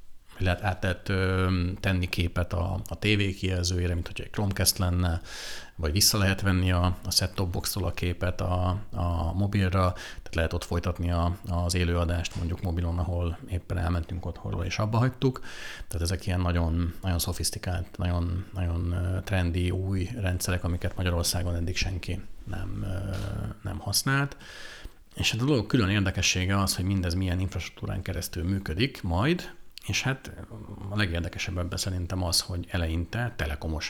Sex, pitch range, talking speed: male, 85-100 Hz, 150 wpm